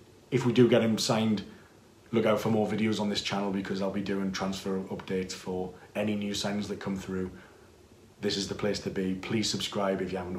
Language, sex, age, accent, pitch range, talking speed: English, male, 30-49, British, 100-115 Hz, 220 wpm